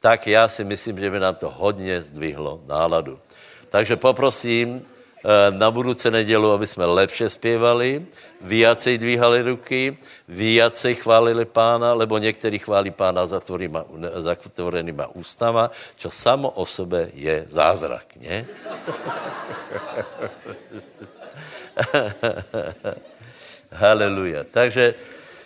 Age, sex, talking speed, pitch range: 60-79, male, 95 wpm, 115-150 Hz